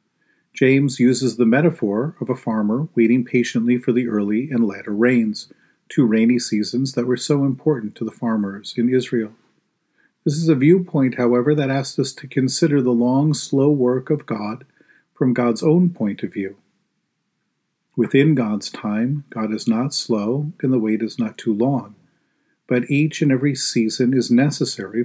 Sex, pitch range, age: male, 115-135 Hz, 40-59